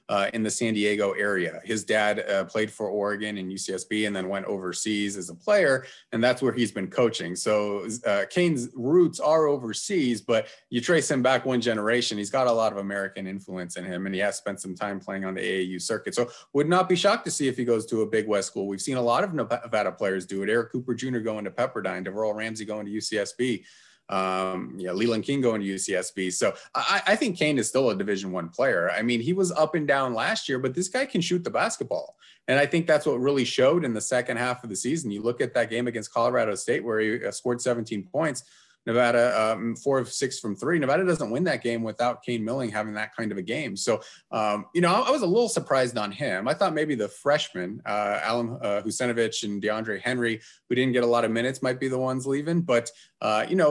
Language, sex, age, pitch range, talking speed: English, male, 30-49, 105-130 Hz, 240 wpm